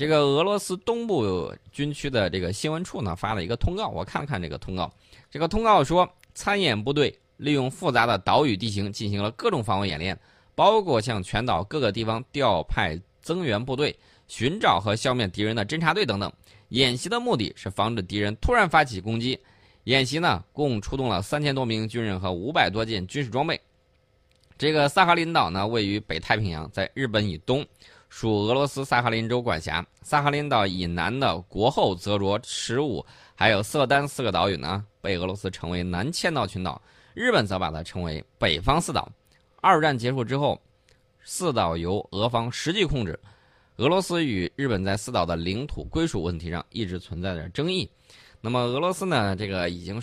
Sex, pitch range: male, 95-140 Hz